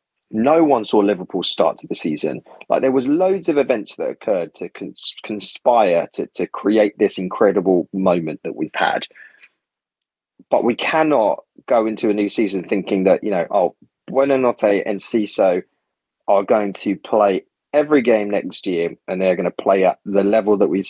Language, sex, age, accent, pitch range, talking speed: English, male, 20-39, British, 105-165 Hz, 180 wpm